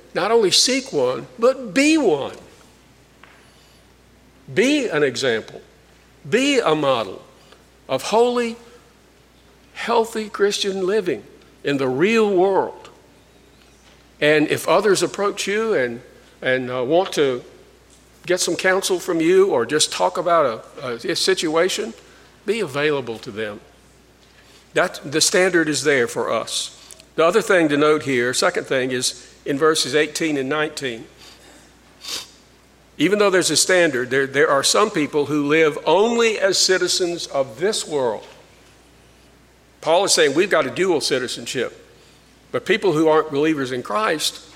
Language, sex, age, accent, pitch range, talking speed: English, male, 50-69, American, 135-220 Hz, 135 wpm